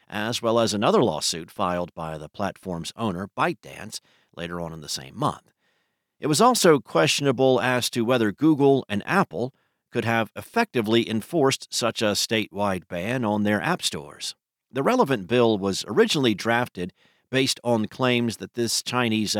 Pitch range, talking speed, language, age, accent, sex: 100-125 Hz, 160 wpm, English, 50-69, American, male